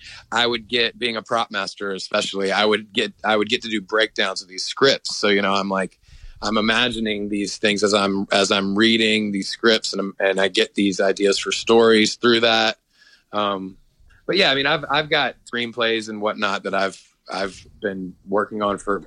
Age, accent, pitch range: 30-49, American, 100-120 Hz